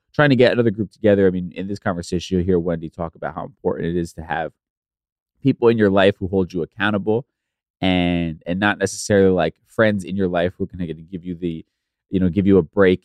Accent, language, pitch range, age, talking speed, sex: American, English, 80-95 Hz, 20-39, 240 wpm, male